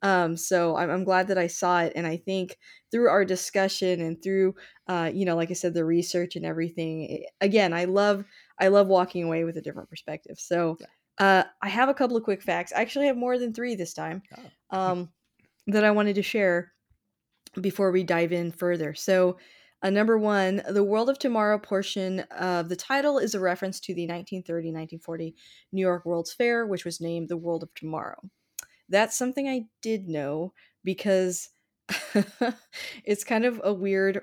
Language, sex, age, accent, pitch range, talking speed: English, female, 20-39, American, 170-200 Hz, 190 wpm